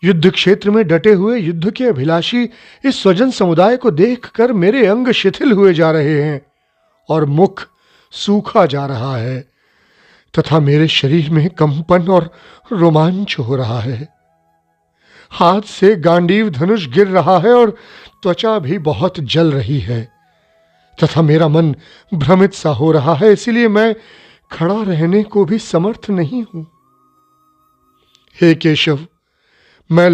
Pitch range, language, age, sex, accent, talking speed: 150-205 Hz, Hindi, 40-59, male, native, 140 wpm